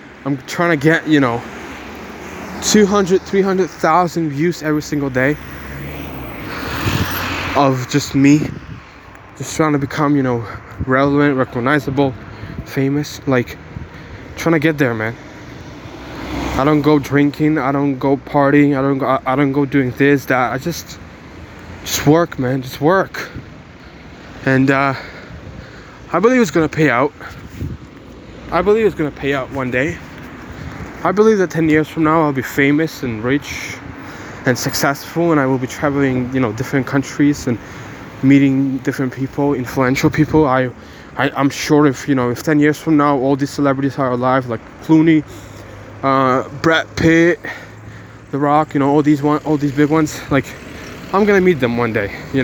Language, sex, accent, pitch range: English, male, American, 130-150 Hz